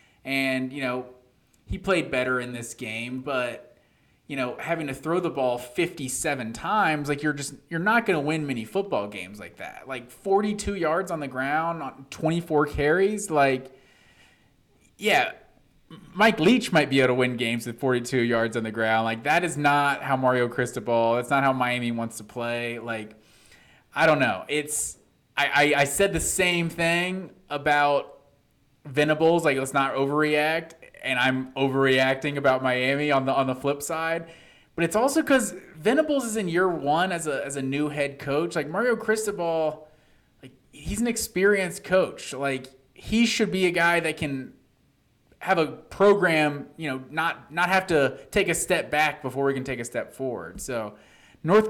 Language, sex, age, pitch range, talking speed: English, male, 20-39, 130-170 Hz, 180 wpm